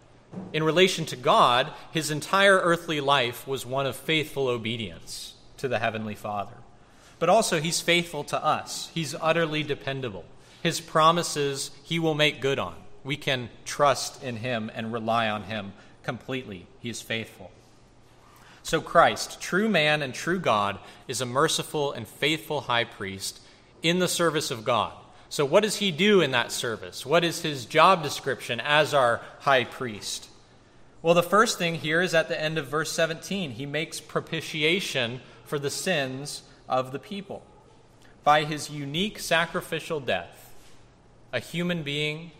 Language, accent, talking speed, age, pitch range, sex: English, American, 155 wpm, 30-49, 115-160 Hz, male